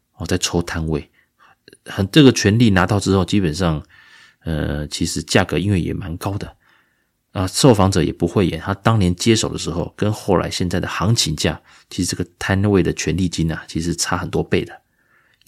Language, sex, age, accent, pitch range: Chinese, male, 30-49, native, 85-105 Hz